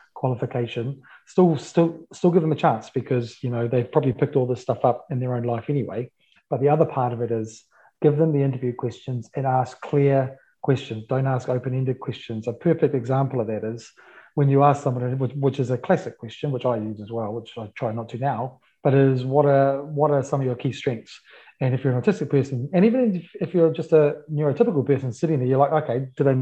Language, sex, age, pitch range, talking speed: English, male, 30-49, 125-150 Hz, 230 wpm